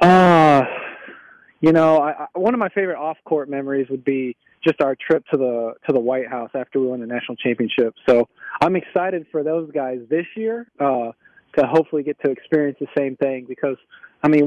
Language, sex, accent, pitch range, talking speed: English, male, American, 130-160 Hz, 205 wpm